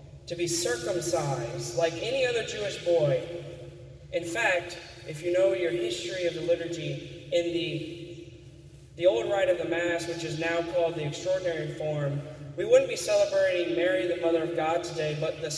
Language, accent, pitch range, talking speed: English, American, 140-180 Hz, 175 wpm